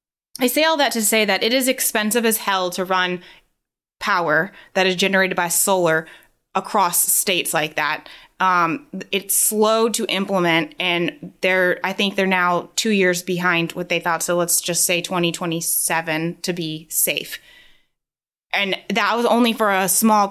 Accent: American